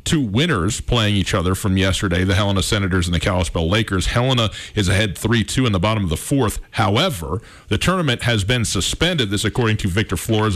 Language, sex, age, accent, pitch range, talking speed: English, male, 40-59, American, 95-135 Hz, 200 wpm